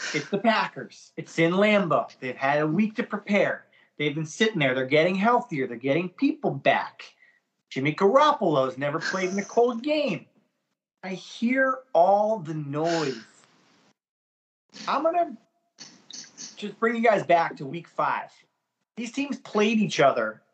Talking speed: 150 wpm